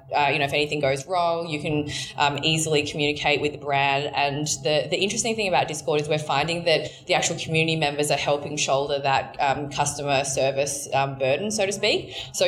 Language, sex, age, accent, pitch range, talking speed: English, female, 20-39, Australian, 140-160 Hz, 205 wpm